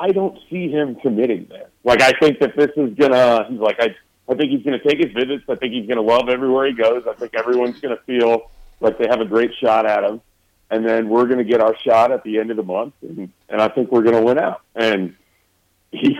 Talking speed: 270 wpm